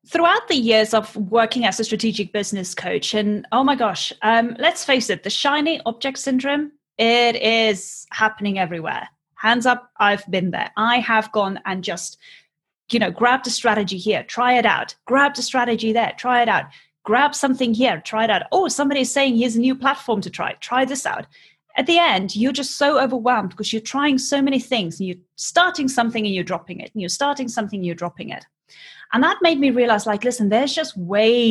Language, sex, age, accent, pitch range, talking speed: English, female, 30-49, British, 200-255 Hz, 210 wpm